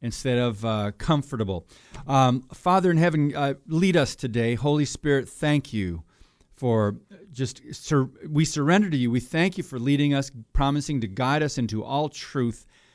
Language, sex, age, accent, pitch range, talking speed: English, male, 40-59, American, 115-150 Hz, 165 wpm